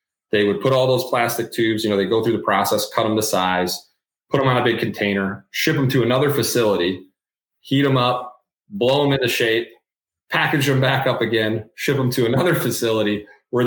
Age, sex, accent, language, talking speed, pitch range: 30-49, male, American, English, 205 wpm, 110-130 Hz